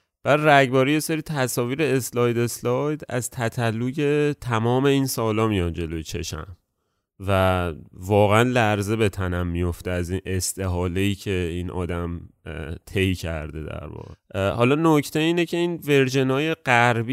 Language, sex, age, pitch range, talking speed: Persian, male, 30-49, 90-115 Hz, 135 wpm